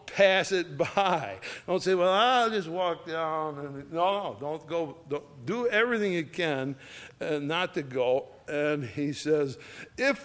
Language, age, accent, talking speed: English, 60-79, American, 145 wpm